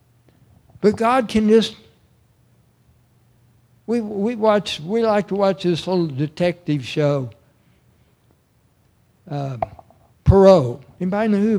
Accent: American